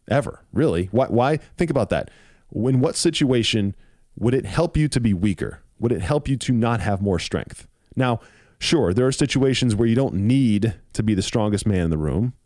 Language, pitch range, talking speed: English, 100-130 Hz, 205 wpm